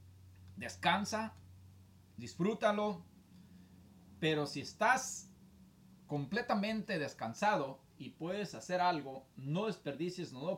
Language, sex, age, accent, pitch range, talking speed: Spanish, male, 40-59, Mexican, 125-180 Hz, 80 wpm